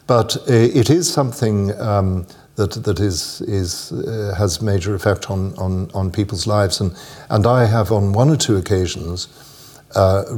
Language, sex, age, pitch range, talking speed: Swedish, male, 60-79, 90-105 Hz, 160 wpm